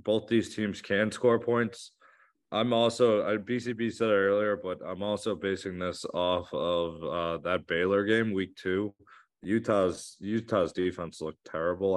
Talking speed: 150 wpm